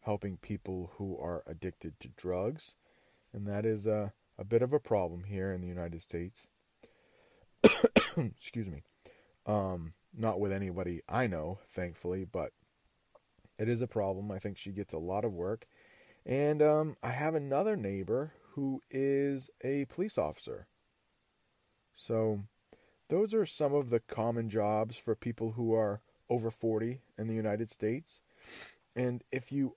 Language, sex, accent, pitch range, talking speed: English, male, American, 100-120 Hz, 150 wpm